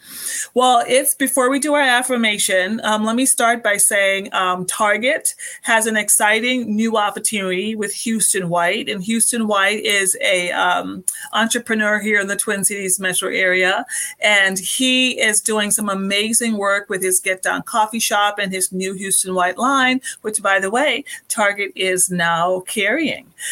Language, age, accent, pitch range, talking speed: English, 40-59, American, 185-225 Hz, 165 wpm